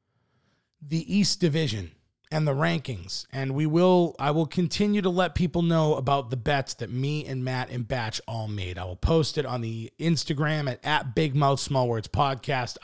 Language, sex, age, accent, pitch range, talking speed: English, male, 30-49, American, 120-165 Hz, 190 wpm